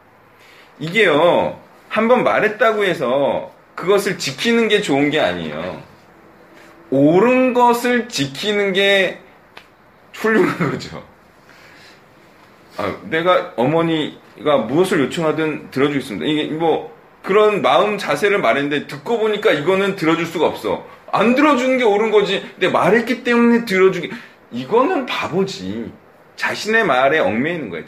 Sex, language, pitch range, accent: male, Korean, 135-210 Hz, native